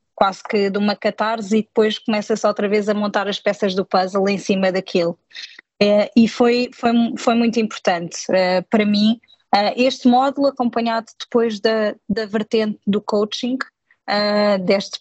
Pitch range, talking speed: 200-225 Hz, 145 wpm